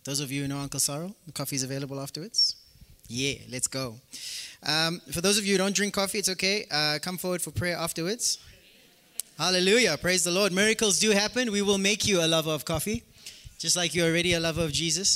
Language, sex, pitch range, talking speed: English, male, 160-210 Hz, 215 wpm